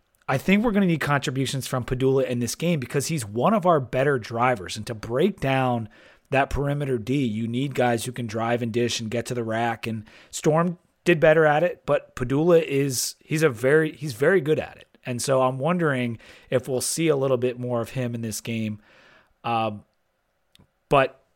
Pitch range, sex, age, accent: 120-160 Hz, male, 30-49, American